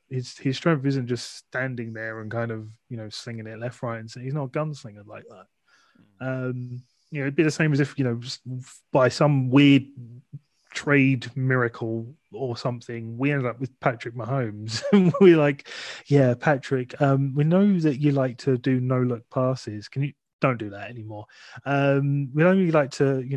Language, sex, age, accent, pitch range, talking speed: English, male, 20-39, British, 120-140 Hz, 200 wpm